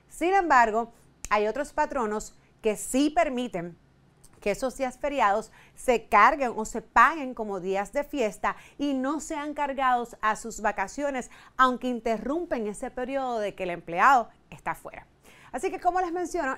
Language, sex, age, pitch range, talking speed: Spanish, female, 30-49, 200-275 Hz, 155 wpm